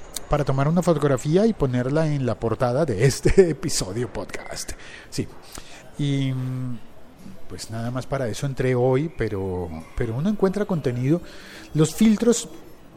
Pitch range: 120-160 Hz